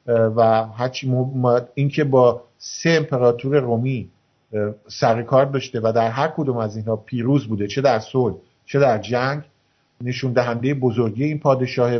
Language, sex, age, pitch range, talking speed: Persian, male, 50-69, 115-135 Hz, 145 wpm